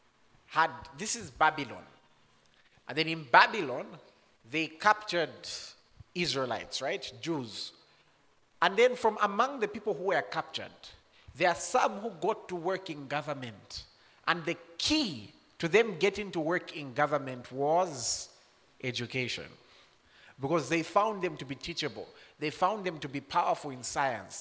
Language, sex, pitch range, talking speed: English, male, 130-185 Hz, 145 wpm